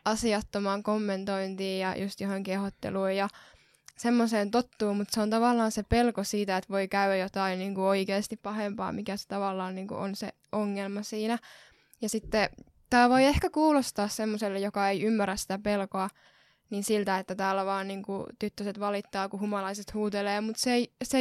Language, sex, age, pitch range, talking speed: Finnish, female, 10-29, 195-225 Hz, 160 wpm